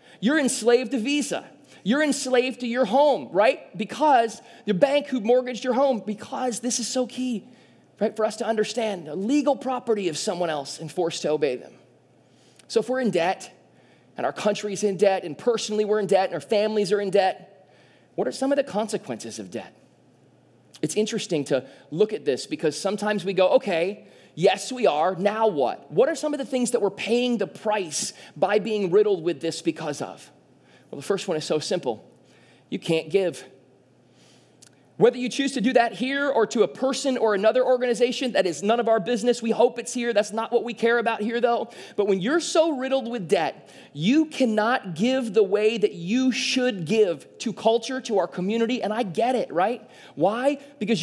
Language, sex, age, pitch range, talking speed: English, male, 20-39, 200-255 Hz, 200 wpm